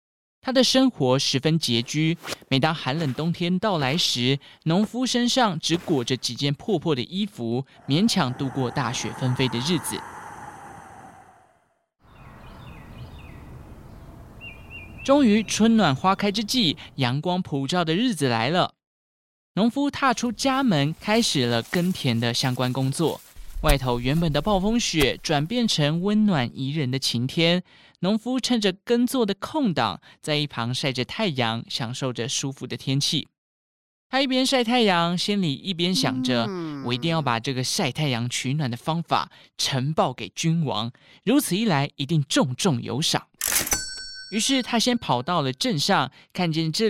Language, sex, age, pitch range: Chinese, male, 20-39, 130-200 Hz